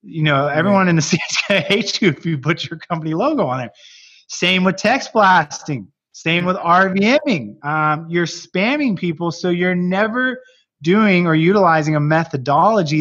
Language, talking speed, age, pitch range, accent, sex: English, 155 wpm, 20-39, 145-195 Hz, American, male